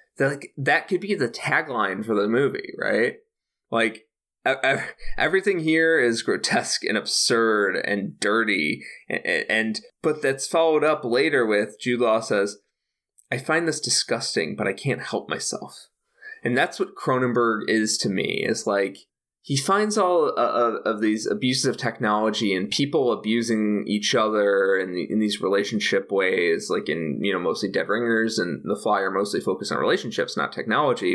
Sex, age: male, 20-39